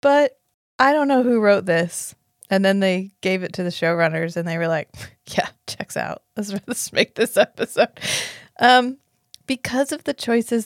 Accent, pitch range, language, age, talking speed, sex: American, 165-215 Hz, English, 20-39, 180 wpm, female